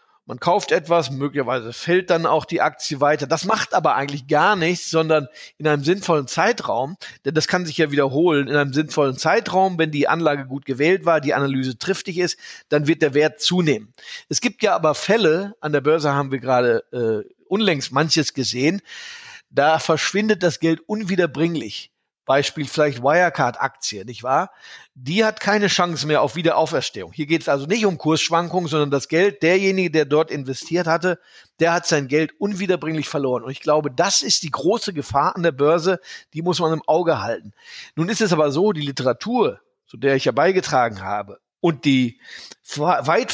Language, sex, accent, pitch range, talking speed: German, male, German, 140-175 Hz, 185 wpm